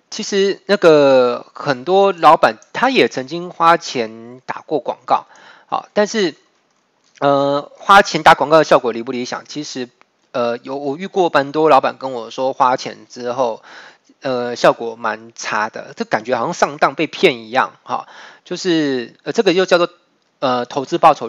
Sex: male